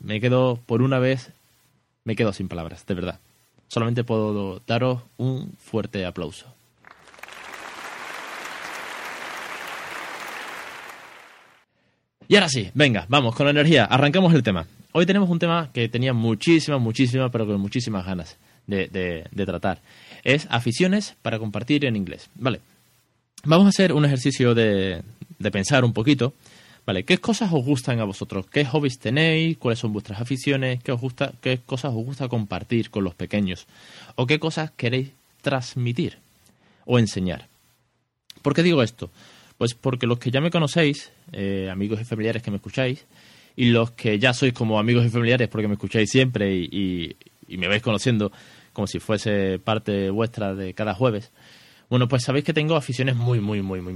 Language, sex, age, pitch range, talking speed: Spanish, male, 20-39, 105-135 Hz, 160 wpm